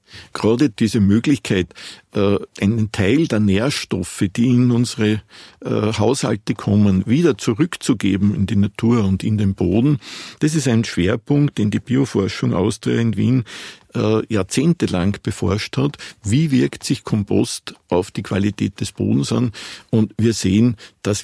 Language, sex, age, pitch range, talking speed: German, male, 50-69, 100-115 Hz, 135 wpm